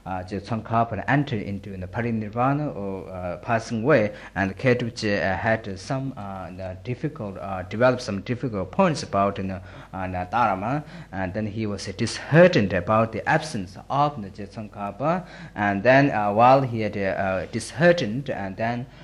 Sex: male